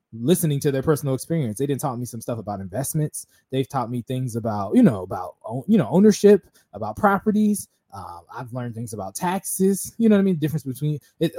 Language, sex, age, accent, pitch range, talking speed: English, male, 20-39, American, 125-170 Hz, 215 wpm